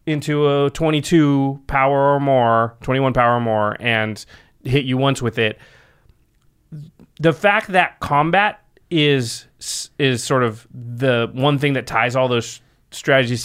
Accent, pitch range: American, 115-150 Hz